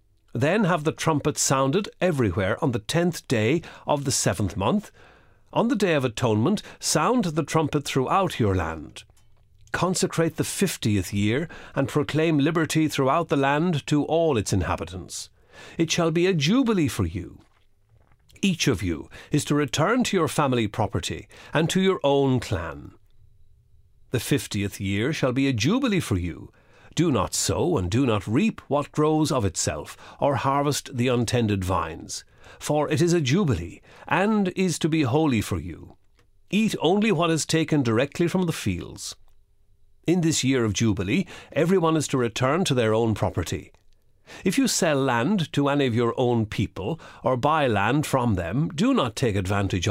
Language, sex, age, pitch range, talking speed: English, male, 50-69, 100-160 Hz, 165 wpm